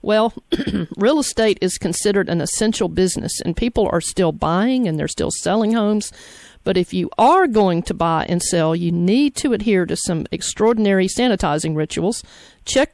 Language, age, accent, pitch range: English, 50-69, American, 175-215 Hz